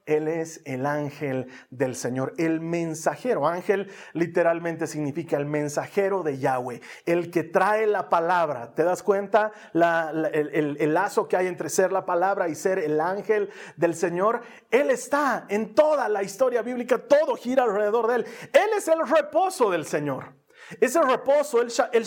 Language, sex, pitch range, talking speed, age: Spanish, male, 160-225 Hz, 165 wpm, 40-59